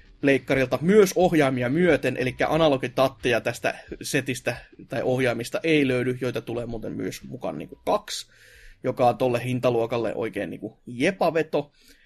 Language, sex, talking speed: Finnish, male, 140 wpm